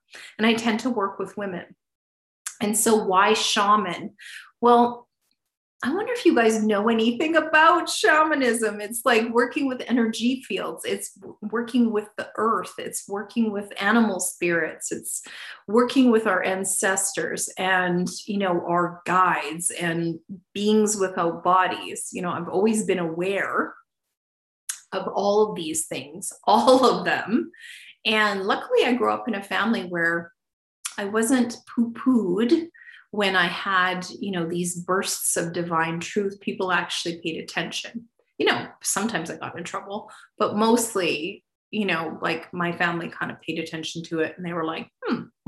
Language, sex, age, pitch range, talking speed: English, female, 30-49, 180-230 Hz, 155 wpm